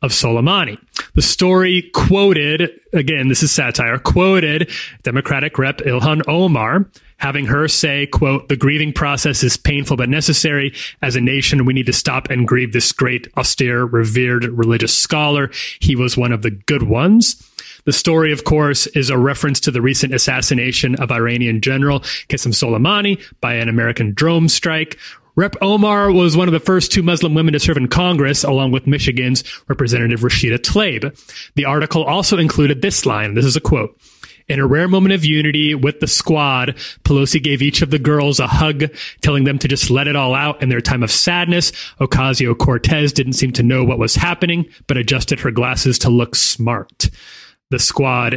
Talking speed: 180 wpm